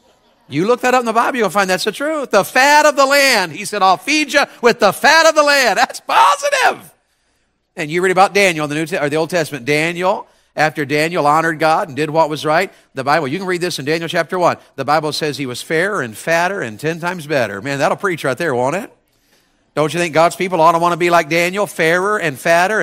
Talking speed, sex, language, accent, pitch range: 245 wpm, male, English, American, 145-230 Hz